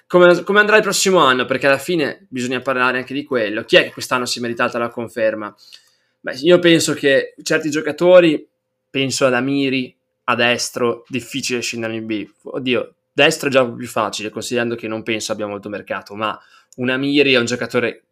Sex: male